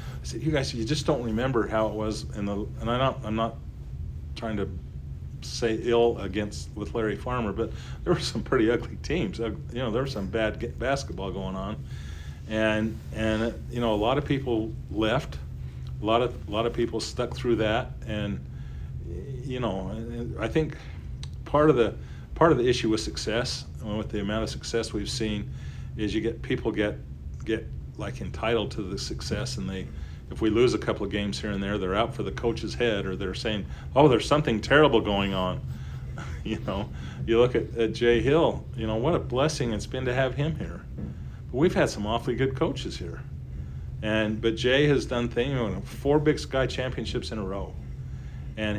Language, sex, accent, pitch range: English, male, American, 80-120 Hz